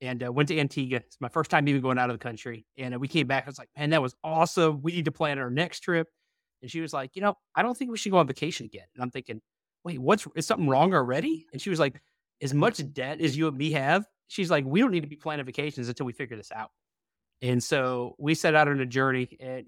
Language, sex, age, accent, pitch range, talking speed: English, male, 30-49, American, 125-155 Hz, 285 wpm